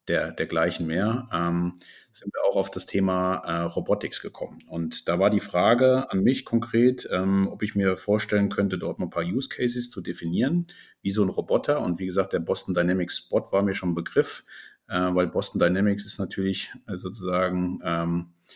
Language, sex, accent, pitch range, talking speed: German, male, German, 90-110 Hz, 195 wpm